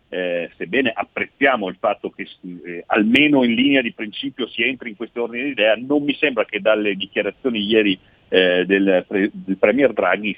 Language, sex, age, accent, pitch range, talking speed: Italian, male, 50-69, native, 95-110 Hz, 180 wpm